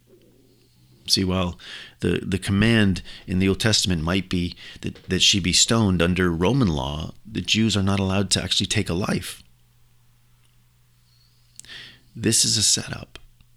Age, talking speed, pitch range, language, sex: 40-59, 145 wpm, 75-105 Hz, English, male